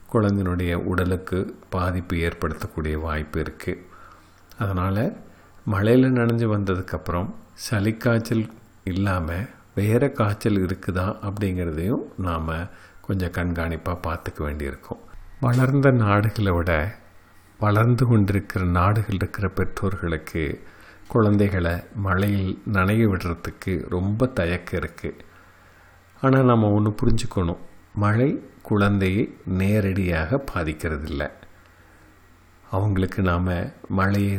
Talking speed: 85 wpm